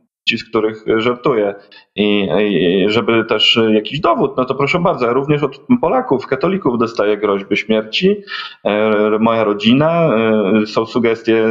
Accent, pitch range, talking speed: native, 105-130 Hz, 130 wpm